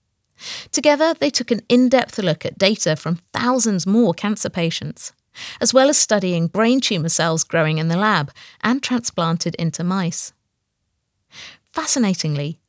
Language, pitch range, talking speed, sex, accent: English, 170-245 Hz, 135 wpm, female, British